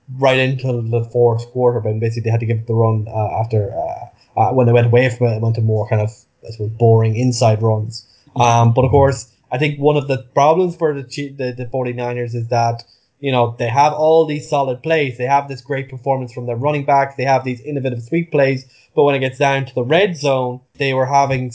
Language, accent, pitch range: English, Irish, 120-140 Hz